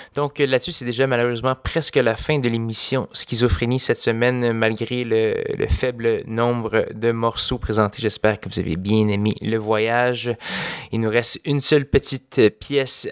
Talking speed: 165 wpm